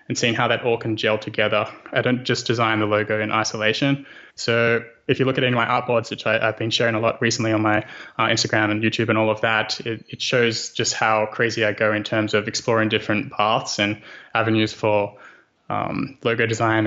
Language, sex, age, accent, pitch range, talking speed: English, male, 20-39, Australian, 110-120 Hz, 225 wpm